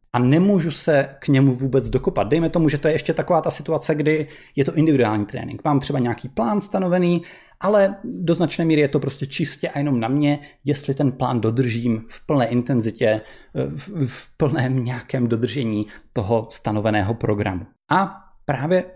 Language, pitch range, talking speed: Czech, 130-160 Hz, 175 wpm